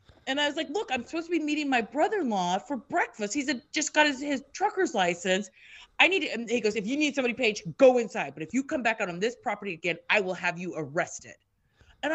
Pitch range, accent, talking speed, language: 185-280 Hz, American, 240 wpm, English